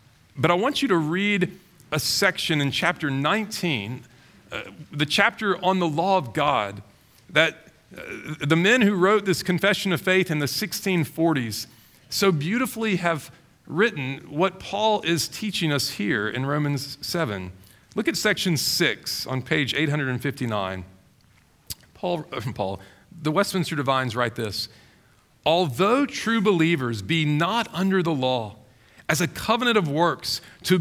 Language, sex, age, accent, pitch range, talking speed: English, male, 40-59, American, 135-205 Hz, 145 wpm